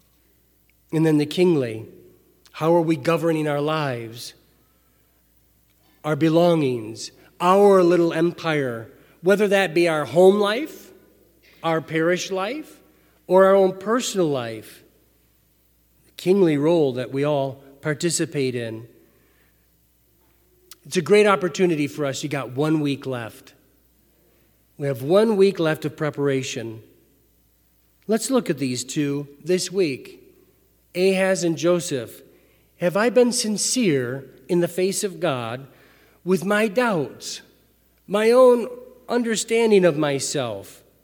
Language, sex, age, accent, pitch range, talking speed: English, male, 40-59, American, 130-190 Hz, 120 wpm